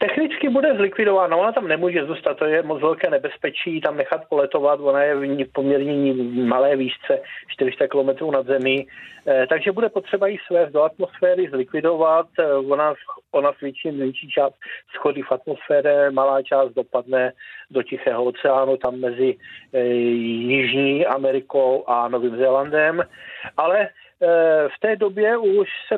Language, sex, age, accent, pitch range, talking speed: Czech, male, 40-59, native, 140-185 Hz, 145 wpm